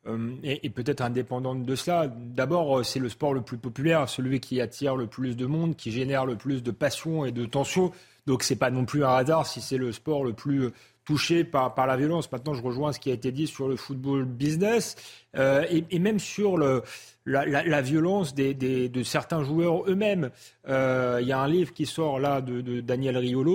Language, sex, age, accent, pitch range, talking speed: French, male, 30-49, French, 130-150 Hz, 225 wpm